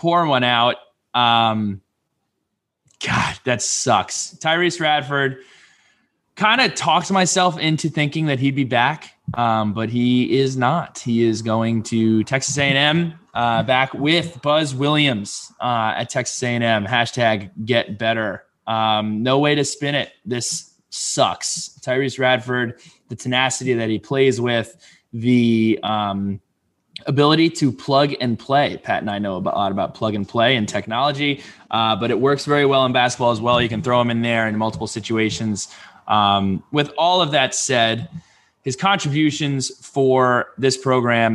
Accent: American